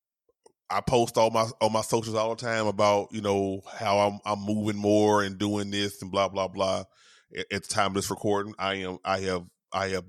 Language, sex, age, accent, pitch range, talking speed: English, male, 20-39, American, 95-115 Hz, 220 wpm